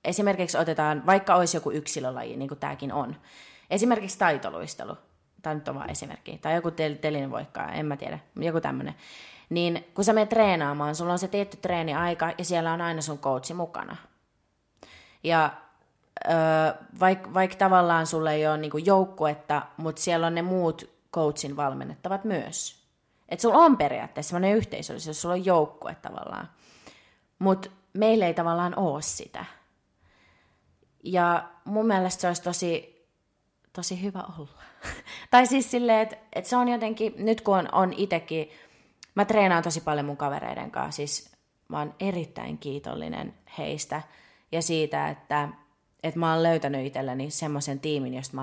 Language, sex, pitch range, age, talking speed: Finnish, female, 150-185 Hz, 20-39, 155 wpm